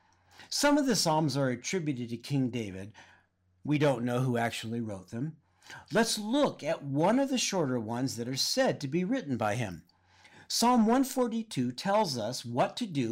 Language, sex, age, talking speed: English, male, 50-69, 180 wpm